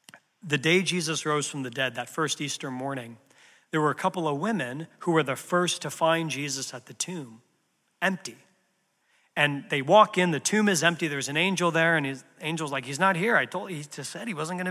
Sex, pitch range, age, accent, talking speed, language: male, 150-190 Hz, 40-59, American, 230 wpm, English